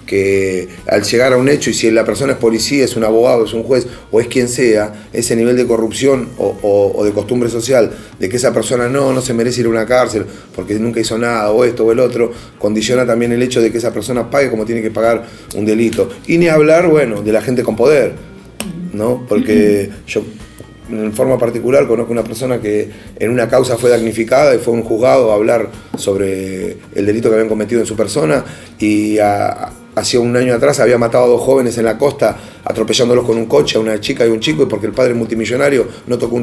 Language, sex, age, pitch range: Spanish, male, 30-49, 110-125 Hz